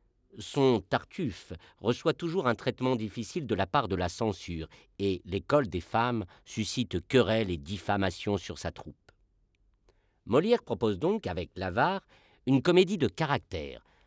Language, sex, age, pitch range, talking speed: French, male, 50-69, 95-125 Hz, 140 wpm